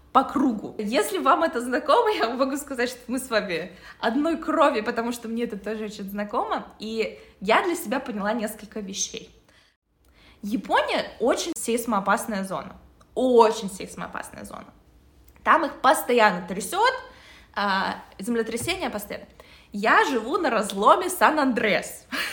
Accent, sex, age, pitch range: native, female, 20-39, 220-295 Hz